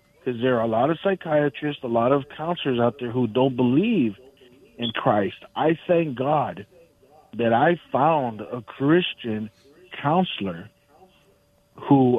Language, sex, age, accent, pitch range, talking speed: English, male, 50-69, American, 120-160 Hz, 135 wpm